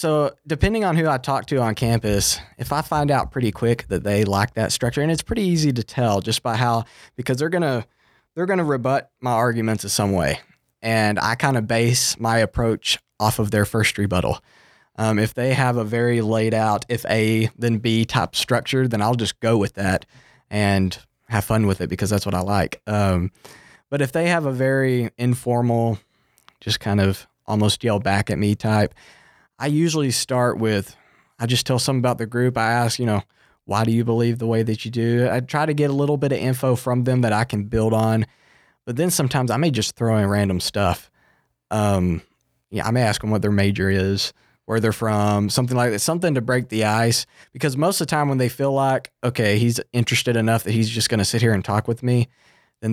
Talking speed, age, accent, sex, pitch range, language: 220 wpm, 20-39, American, male, 105-130 Hz, English